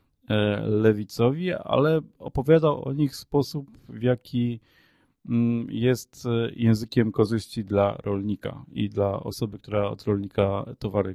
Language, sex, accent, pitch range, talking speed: Polish, male, native, 105-120 Hz, 110 wpm